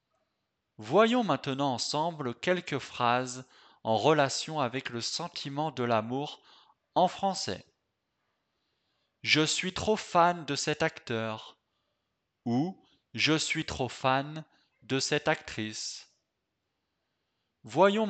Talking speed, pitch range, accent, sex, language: 100 wpm, 115-165 Hz, French, male, French